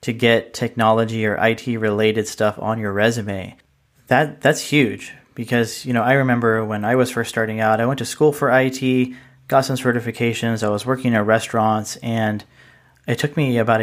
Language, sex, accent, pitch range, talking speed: English, male, American, 110-125 Hz, 180 wpm